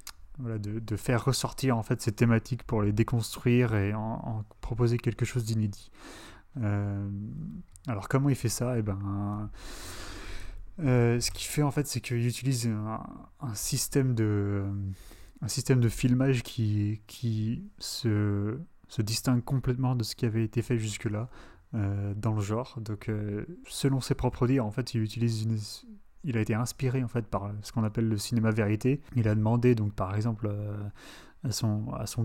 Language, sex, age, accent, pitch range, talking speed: French, male, 30-49, French, 105-125 Hz, 180 wpm